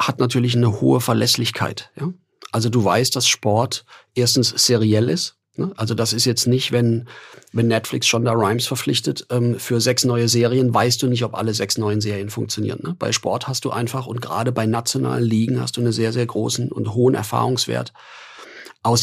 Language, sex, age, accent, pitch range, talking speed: German, male, 40-59, German, 110-125 Hz, 185 wpm